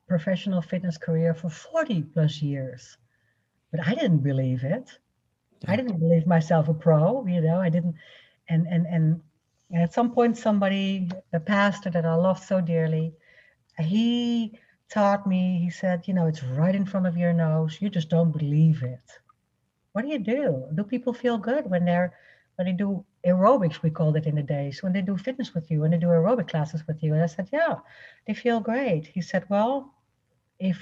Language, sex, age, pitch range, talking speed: English, female, 60-79, 160-230 Hz, 195 wpm